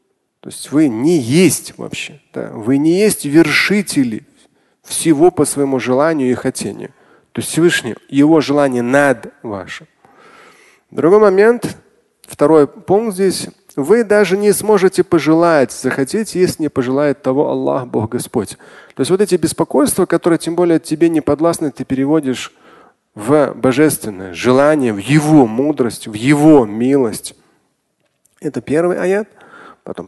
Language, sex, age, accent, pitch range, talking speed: Russian, male, 30-49, native, 135-190 Hz, 135 wpm